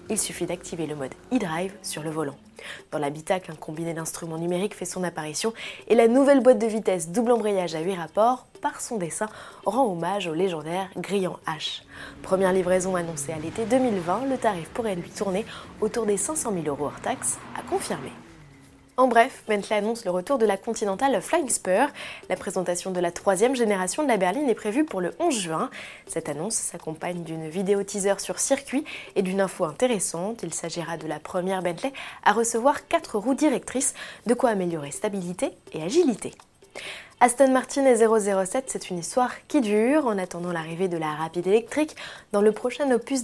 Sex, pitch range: female, 180-245 Hz